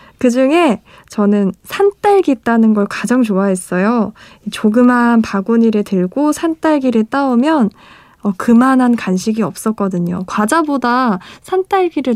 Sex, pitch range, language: female, 200-270 Hz, Korean